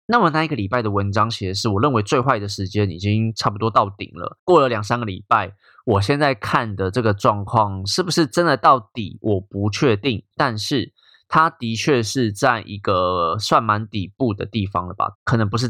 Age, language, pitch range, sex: 20-39, Chinese, 105-140 Hz, male